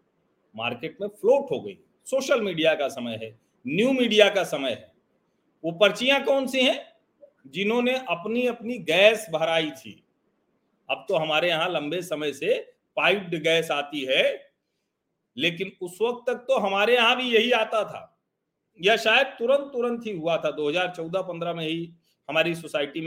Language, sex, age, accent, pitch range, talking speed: Hindi, male, 40-59, native, 170-255 Hz, 155 wpm